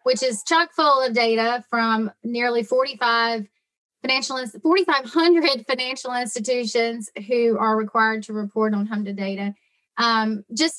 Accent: American